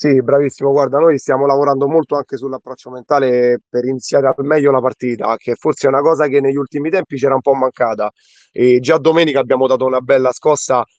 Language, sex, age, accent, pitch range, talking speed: Italian, male, 30-49, native, 130-150 Hz, 200 wpm